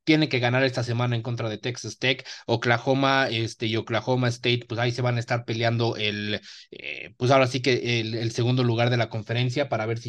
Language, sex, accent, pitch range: Spanish, male, Mexican, 110-130 Hz